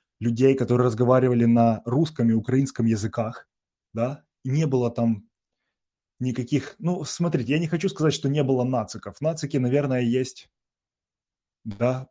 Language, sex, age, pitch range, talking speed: Russian, male, 20-39, 115-135 Hz, 135 wpm